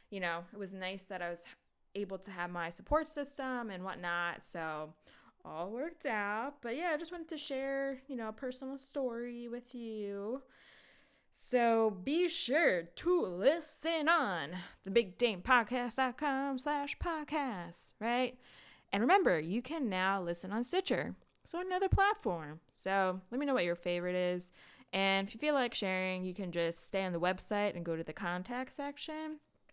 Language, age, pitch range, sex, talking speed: English, 20-39, 180-275 Hz, female, 170 wpm